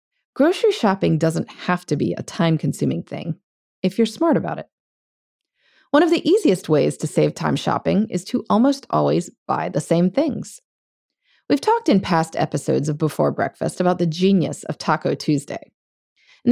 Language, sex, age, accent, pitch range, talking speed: English, female, 30-49, American, 160-235 Hz, 165 wpm